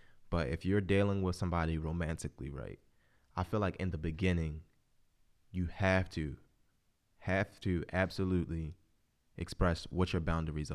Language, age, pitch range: English, 20-39, 80-95 Hz